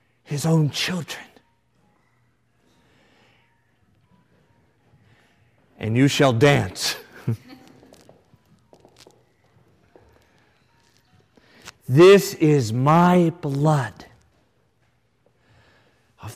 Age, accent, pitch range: 50-69, American, 105-135 Hz